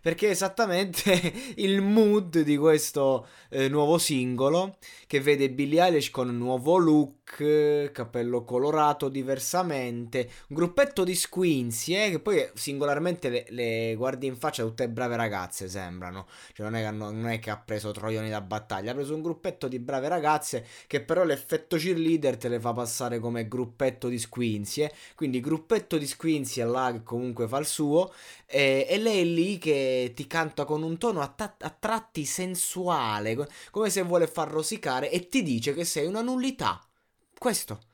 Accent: native